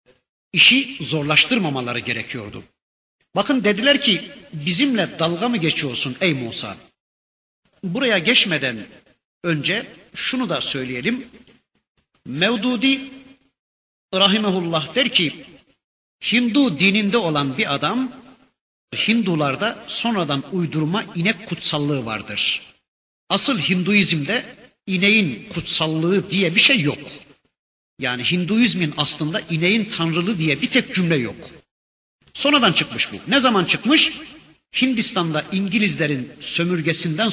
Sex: male